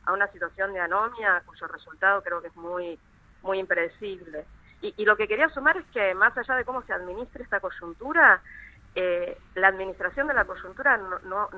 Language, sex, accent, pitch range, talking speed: Spanish, female, Argentinian, 175-210 Hz, 185 wpm